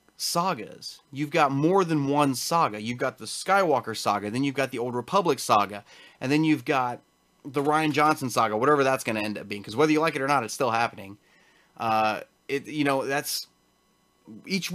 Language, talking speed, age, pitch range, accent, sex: English, 205 wpm, 30-49, 115-155 Hz, American, male